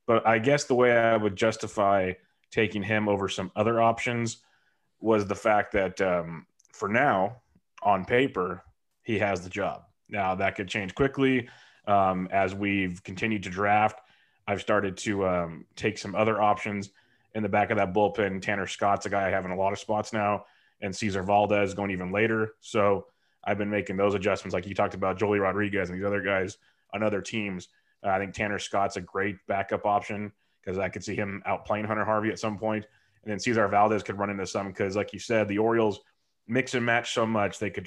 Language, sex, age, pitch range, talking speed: English, male, 30-49, 100-110 Hz, 205 wpm